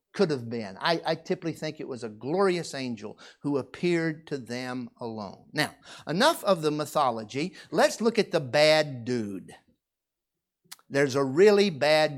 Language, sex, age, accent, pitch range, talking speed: English, male, 50-69, American, 135-190 Hz, 160 wpm